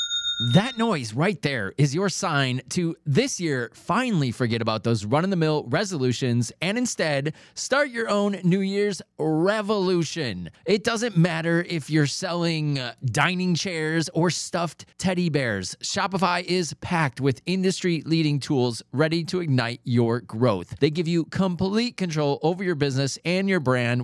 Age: 30-49